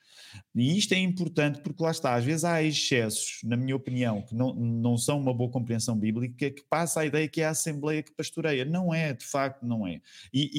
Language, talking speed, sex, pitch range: Portuguese, 220 wpm, male, 125-160 Hz